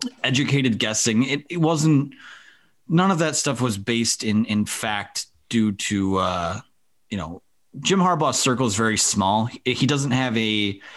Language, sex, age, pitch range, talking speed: English, male, 30-49, 105-135 Hz, 160 wpm